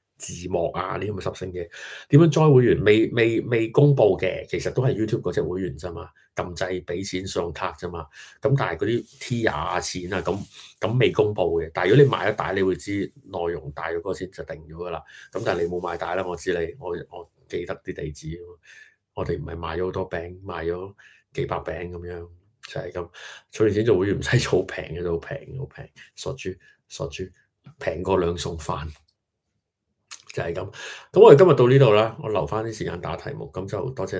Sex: male